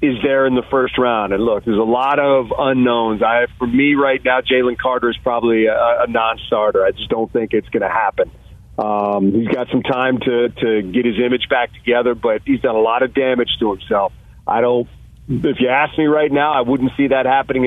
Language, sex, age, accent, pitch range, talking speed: English, male, 40-59, American, 125-155 Hz, 230 wpm